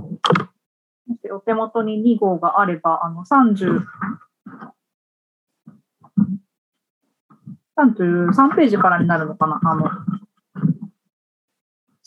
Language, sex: Japanese, female